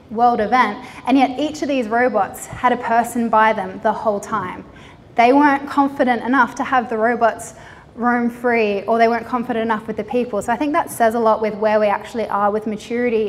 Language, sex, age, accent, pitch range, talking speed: English, female, 10-29, Australian, 210-250 Hz, 215 wpm